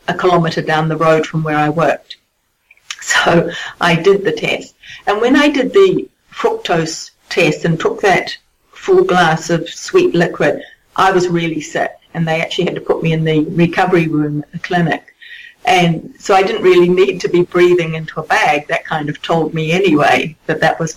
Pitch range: 160-200 Hz